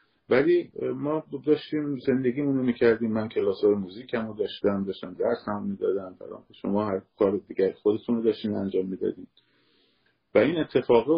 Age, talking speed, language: 50-69, 145 wpm, Persian